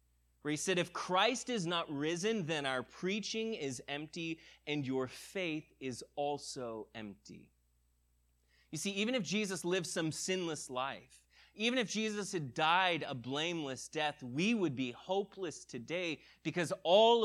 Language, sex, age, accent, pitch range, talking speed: English, male, 30-49, American, 135-200 Hz, 150 wpm